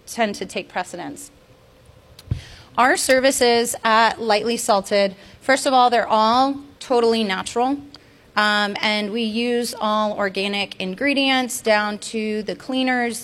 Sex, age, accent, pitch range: female, 30-49, American, 200-250 Hz